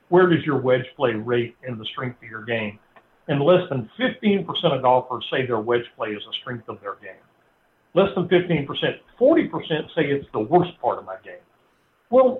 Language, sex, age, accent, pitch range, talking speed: English, male, 60-79, American, 135-170 Hz, 200 wpm